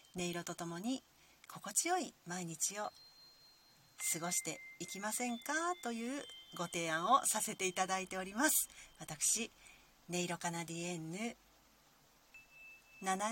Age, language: 40-59, Japanese